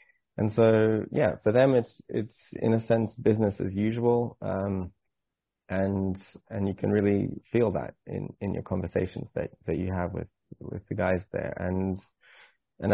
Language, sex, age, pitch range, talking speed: English, male, 20-39, 90-105 Hz, 165 wpm